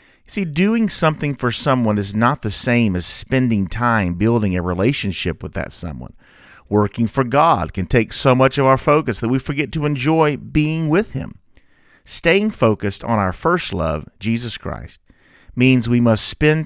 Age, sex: 40-59, male